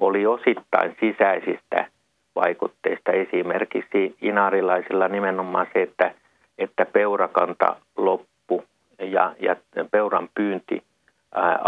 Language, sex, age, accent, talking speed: Finnish, male, 60-79, native, 85 wpm